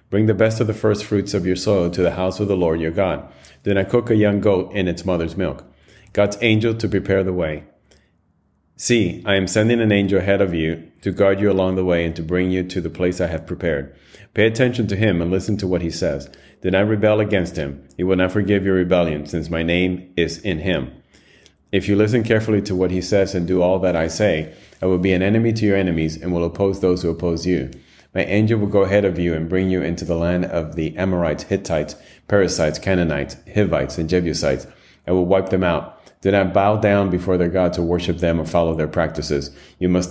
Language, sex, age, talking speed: English, male, 30-49, 235 wpm